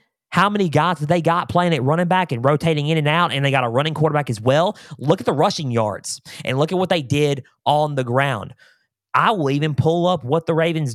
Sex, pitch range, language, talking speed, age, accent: male, 130-180 Hz, English, 245 wpm, 20-39, American